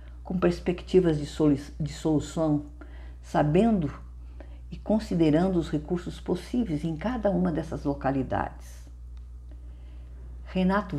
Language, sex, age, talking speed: Portuguese, female, 50-69, 95 wpm